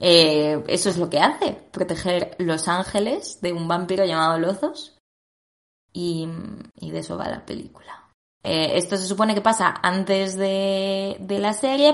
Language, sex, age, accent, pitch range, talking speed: Spanish, female, 20-39, Spanish, 155-195 Hz, 160 wpm